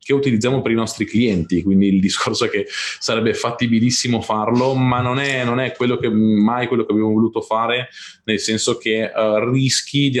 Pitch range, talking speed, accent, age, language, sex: 110-125 Hz, 195 wpm, native, 20-39, Italian, male